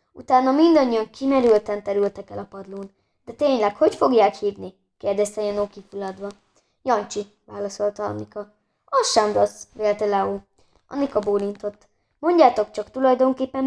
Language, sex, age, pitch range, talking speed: Hungarian, female, 20-39, 200-260 Hz, 125 wpm